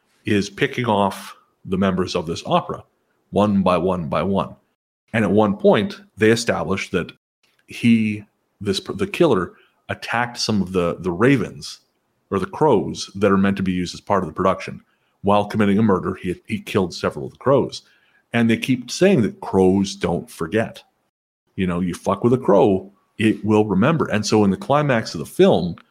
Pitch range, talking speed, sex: 95-120 Hz, 190 wpm, male